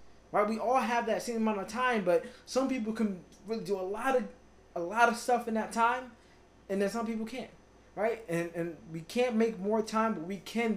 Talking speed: 230 wpm